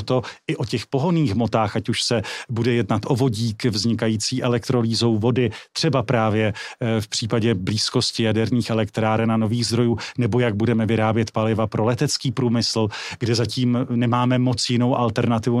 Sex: male